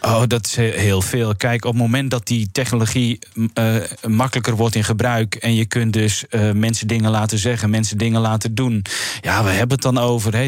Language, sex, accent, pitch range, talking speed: Dutch, male, Dutch, 110-125 Hz, 205 wpm